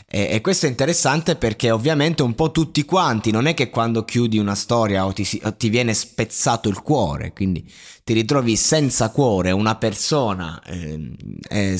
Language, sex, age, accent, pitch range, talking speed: Italian, male, 20-39, native, 100-125 Hz, 170 wpm